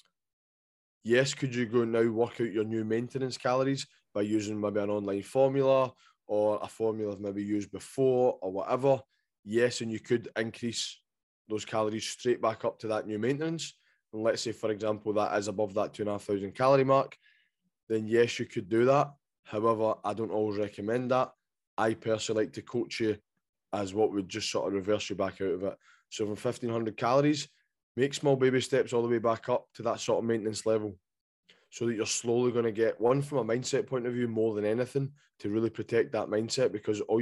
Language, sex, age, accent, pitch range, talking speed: English, male, 20-39, British, 105-120 Hz, 200 wpm